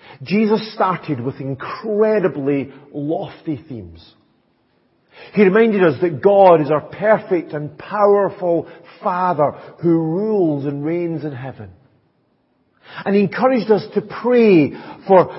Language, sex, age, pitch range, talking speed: English, male, 50-69, 160-225 Hz, 115 wpm